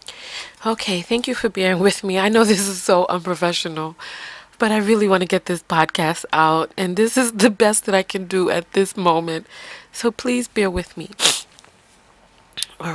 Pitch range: 170-205 Hz